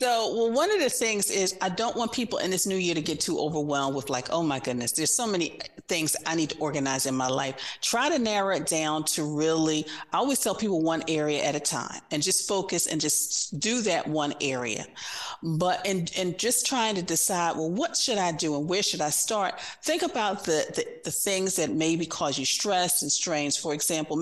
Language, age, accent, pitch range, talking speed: English, 40-59, American, 150-195 Hz, 225 wpm